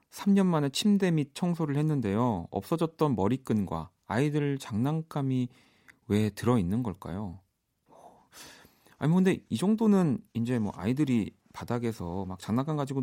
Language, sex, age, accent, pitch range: Korean, male, 40-59, native, 100-150 Hz